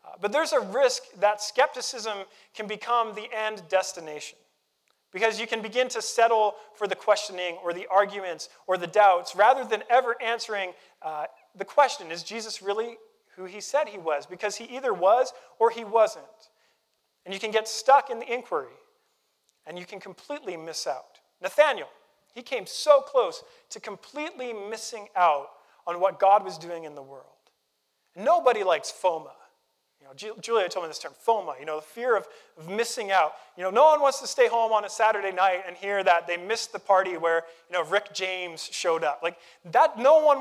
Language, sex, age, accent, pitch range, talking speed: English, male, 40-59, American, 180-245 Hz, 190 wpm